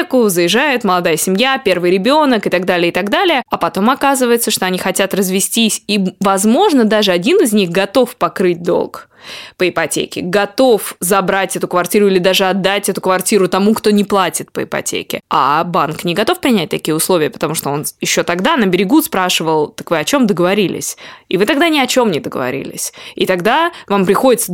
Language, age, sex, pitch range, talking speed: Russian, 20-39, female, 185-230 Hz, 185 wpm